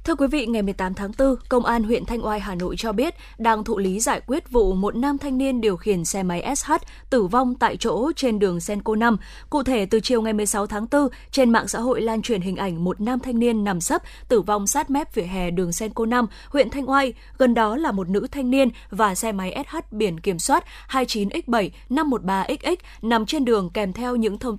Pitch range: 200-255 Hz